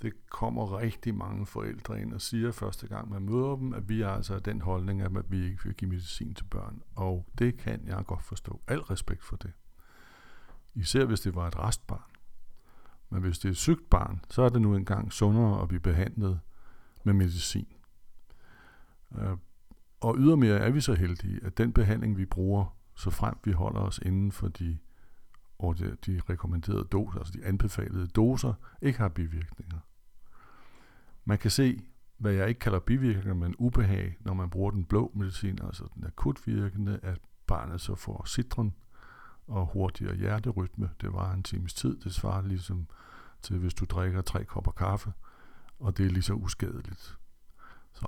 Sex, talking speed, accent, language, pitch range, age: male, 170 wpm, native, Danish, 95-110 Hz, 60-79